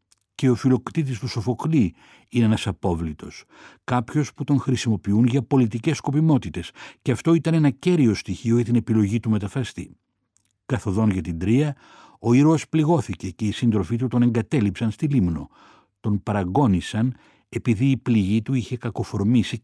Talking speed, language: 150 wpm, Greek